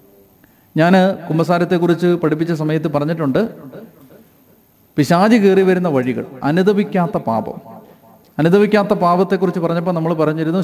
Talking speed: 95 wpm